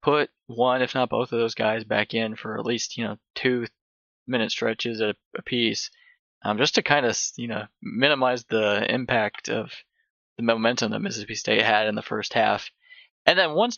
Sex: male